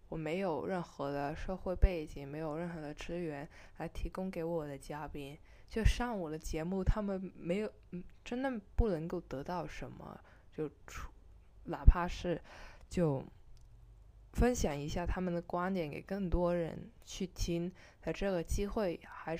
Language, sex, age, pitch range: Chinese, female, 20-39, 150-205 Hz